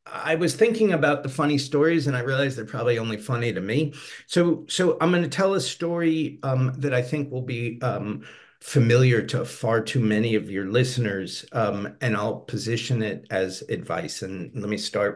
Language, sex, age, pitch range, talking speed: English, male, 50-69, 105-135 Hz, 200 wpm